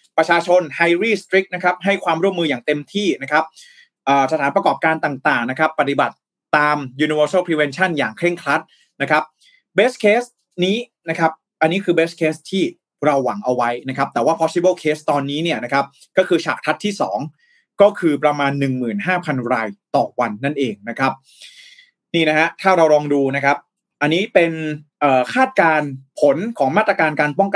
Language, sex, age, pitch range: Thai, male, 20-39, 140-185 Hz